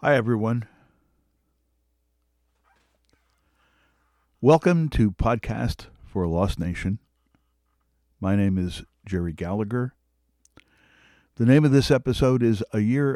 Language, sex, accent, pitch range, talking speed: English, male, American, 70-110 Hz, 100 wpm